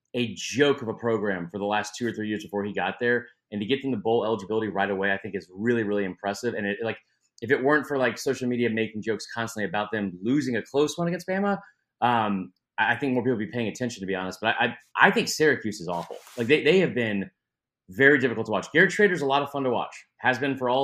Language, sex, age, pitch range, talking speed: English, male, 30-49, 110-140 Hz, 270 wpm